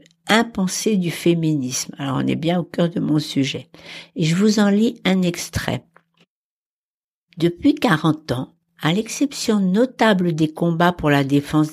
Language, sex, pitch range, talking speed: French, female, 150-205 Hz, 160 wpm